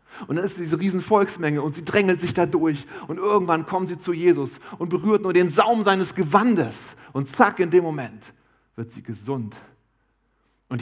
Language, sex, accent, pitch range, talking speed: German, male, German, 120-165 Hz, 185 wpm